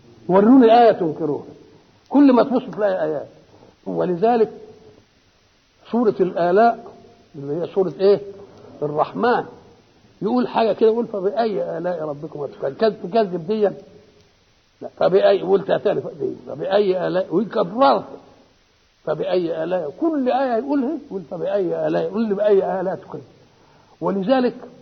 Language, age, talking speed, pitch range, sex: Arabic, 60-79, 125 wpm, 160-220 Hz, male